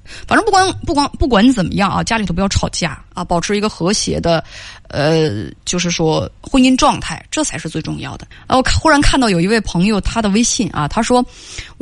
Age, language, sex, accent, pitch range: 20-39, Chinese, female, native, 165-245 Hz